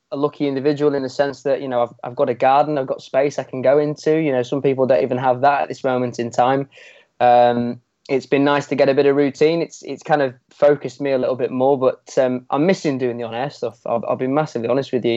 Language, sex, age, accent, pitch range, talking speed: English, male, 20-39, British, 125-145 Hz, 275 wpm